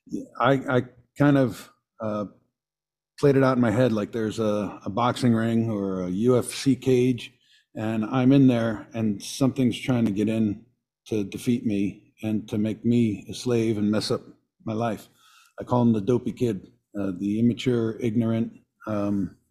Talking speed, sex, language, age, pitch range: 170 wpm, male, English, 50-69, 105-125 Hz